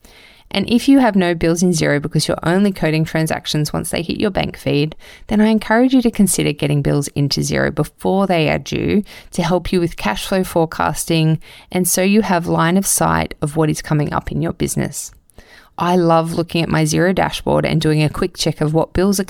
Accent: Australian